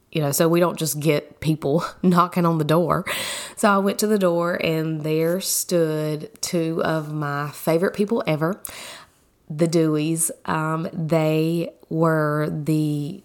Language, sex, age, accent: English, female, 20-39, American